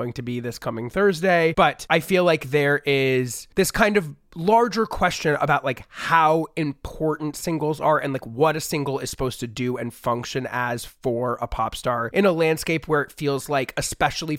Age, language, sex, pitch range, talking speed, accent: 30-49, English, male, 125-165 Hz, 195 wpm, American